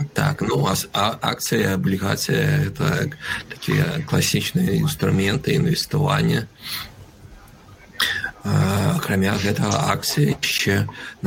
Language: Ukrainian